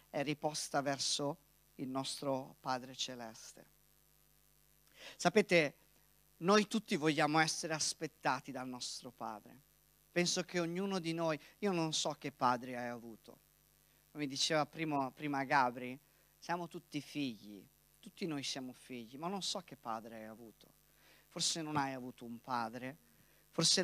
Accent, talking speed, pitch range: native, 135 wpm, 130-175 Hz